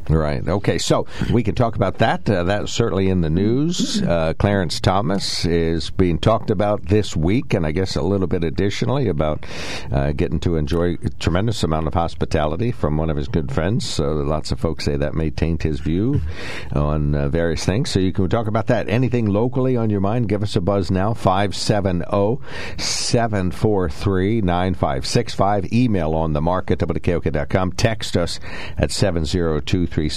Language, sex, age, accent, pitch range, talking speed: English, male, 60-79, American, 80-105 Hz, 180 wpm